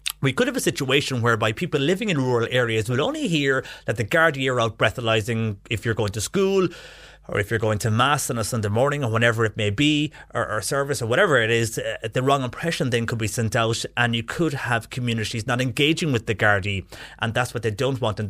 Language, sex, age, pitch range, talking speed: English, male, 30-49, 110-125 Hz, 235 wpm